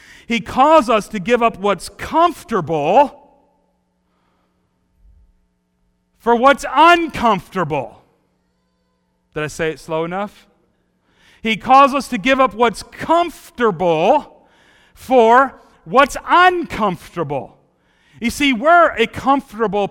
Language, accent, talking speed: English, American, 100 wpm